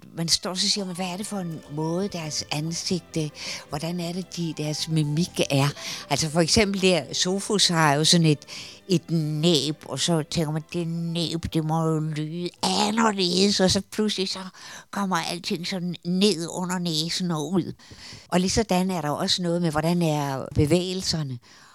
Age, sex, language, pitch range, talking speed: 60-79, female, Danish, 140-185 Hz, 175 wpm